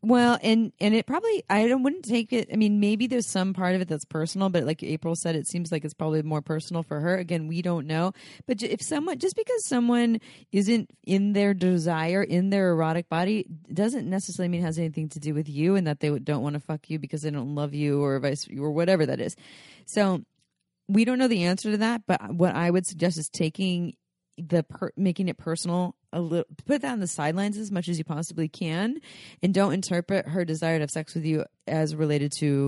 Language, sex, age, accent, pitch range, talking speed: English, female, 30-49, American, 155-200 Hz, 230 wpm